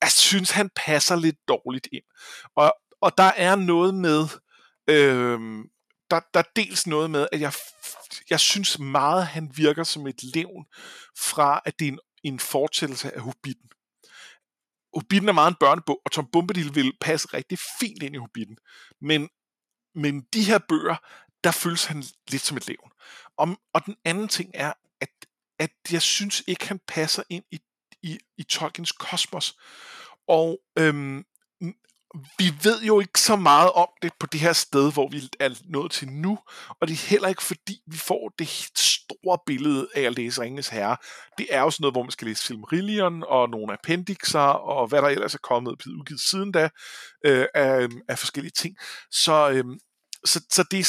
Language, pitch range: Danish, 145-185 Hz